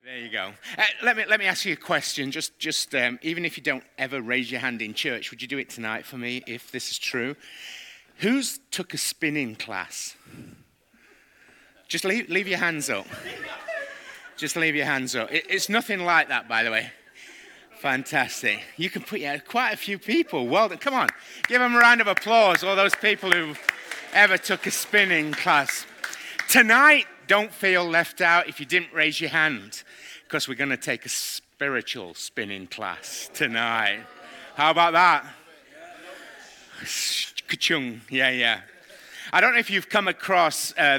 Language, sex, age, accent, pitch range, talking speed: English, male, 30-49, British, 135-180 Hz, 175 wpm